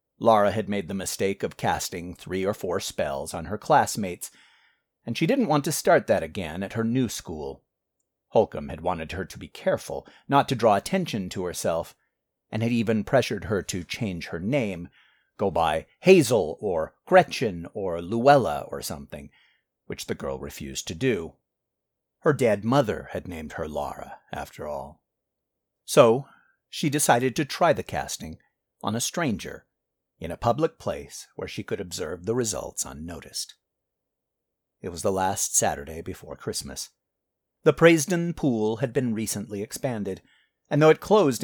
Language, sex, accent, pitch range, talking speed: English, male, American, 95-145 Hz, 160 wpm